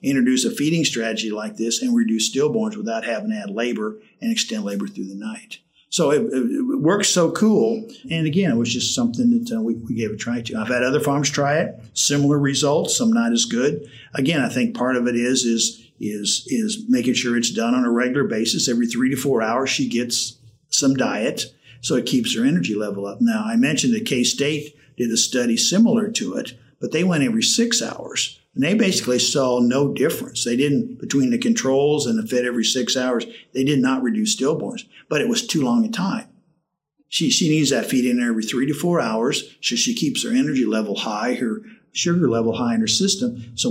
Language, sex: English, male